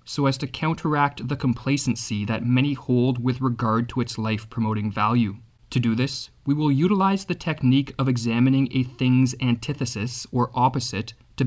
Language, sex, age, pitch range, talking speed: English, male, 20-39, 115-145 Hz, 160 wpm